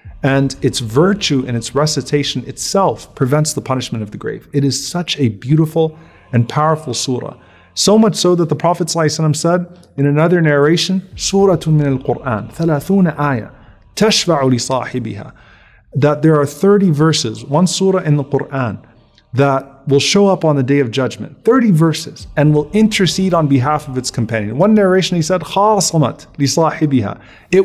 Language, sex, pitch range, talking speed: English, male, 125-160 Hz, 165 wpm